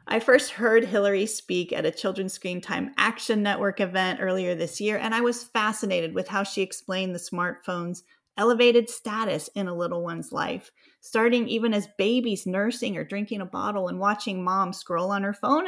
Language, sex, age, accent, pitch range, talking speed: English, female, 30-49, American, 180-235 Hz, 190 wpm